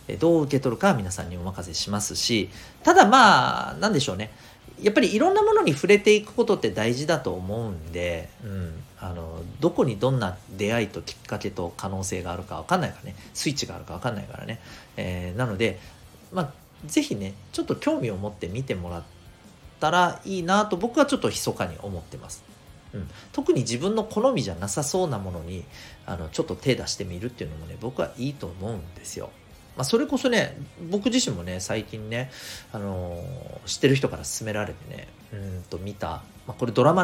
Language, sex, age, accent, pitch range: Japanese, male, 40-59, native, 95-145 Hz